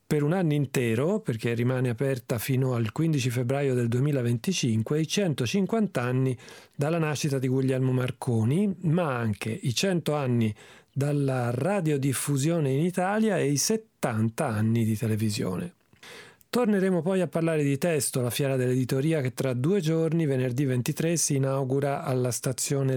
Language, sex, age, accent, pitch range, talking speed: Italian, male, 40-59, native, 120-150 Hz, 145 wpm